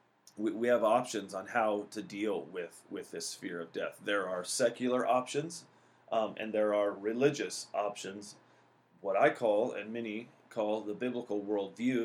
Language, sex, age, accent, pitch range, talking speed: English, male, 30-49, American, 110-135 Hz, 160 wpm